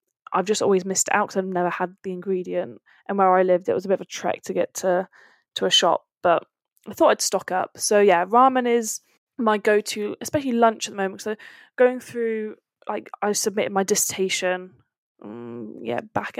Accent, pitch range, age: British, 190-230 Hz, 10-29